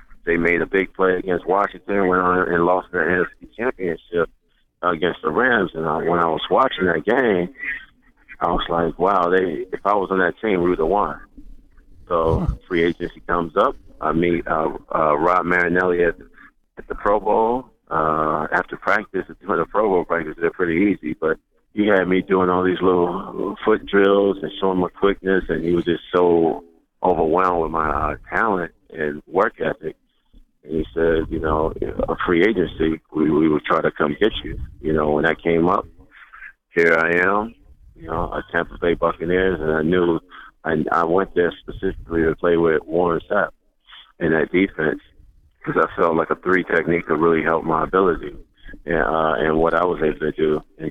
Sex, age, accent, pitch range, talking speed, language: male, 50-69, American, 80-90 Hz, 190 wpm, English